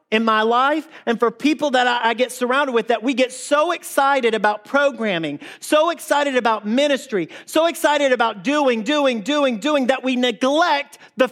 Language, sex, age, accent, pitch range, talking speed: English, male, 40-59, American, 215-275 Hz, 175 wpm